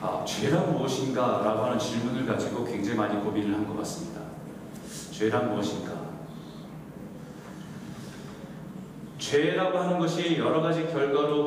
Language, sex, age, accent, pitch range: Korean, male, 40-59, native, 135-175 Hz